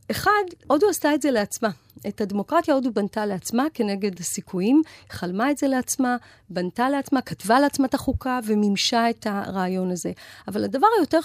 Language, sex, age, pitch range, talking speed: Hebrew, female, 40-59, 190-275 Hz, 160 wpm